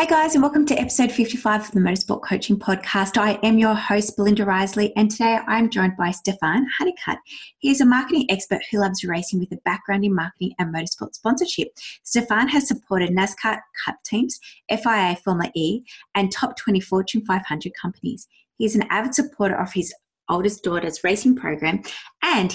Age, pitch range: 20-39, 185-235 Hz